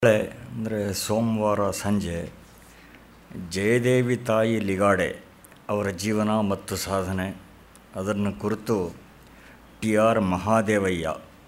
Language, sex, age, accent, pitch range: Kannada, male, 60-79, native, 95-110 Hz